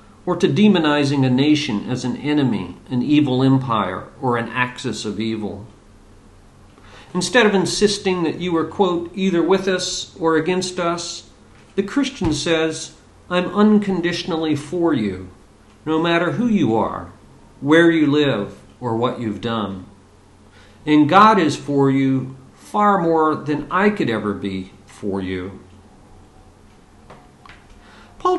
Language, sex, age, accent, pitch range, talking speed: English, male, 50-69, American, 105-175 Hz, 135 wpm